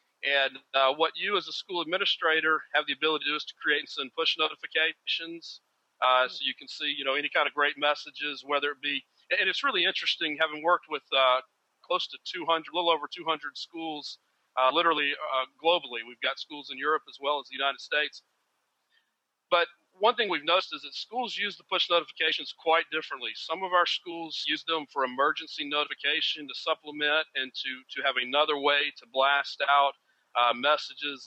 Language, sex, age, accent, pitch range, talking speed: English, male, 40-59, American, 135-160 Hz, 200 wpm